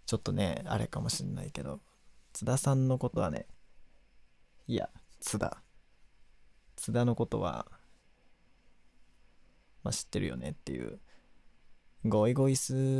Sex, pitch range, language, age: male, 105-135 Hz, Japanese, 20-39